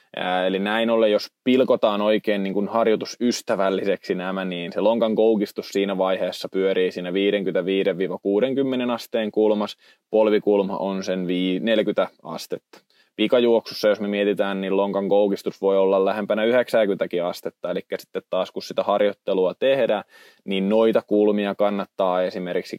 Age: 20-39